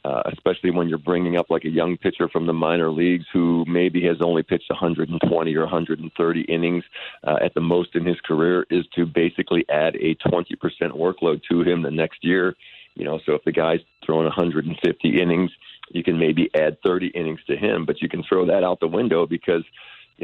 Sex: male